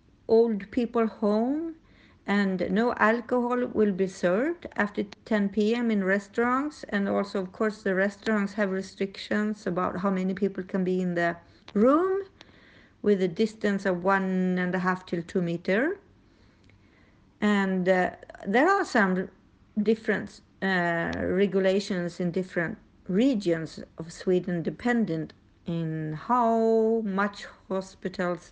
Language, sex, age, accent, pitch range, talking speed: German, female, 50-69, Swedish, 180-225 Hz, 125 wpm